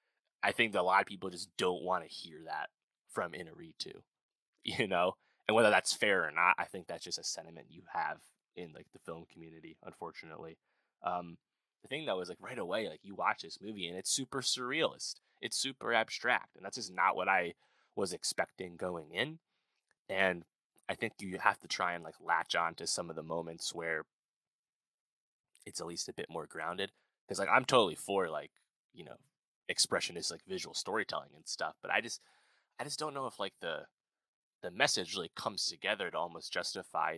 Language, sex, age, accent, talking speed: English, male, 20-39, American, 200 wpm